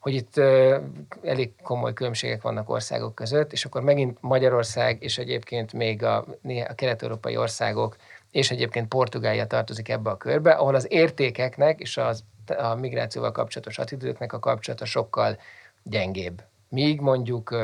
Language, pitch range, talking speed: Hungarian, 110-135 Hz, 135 wpm